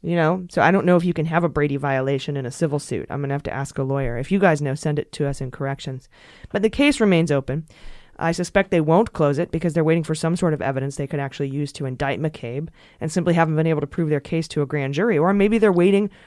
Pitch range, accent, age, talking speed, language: 140-170 Hz, American, 20-39, 290 wpm, English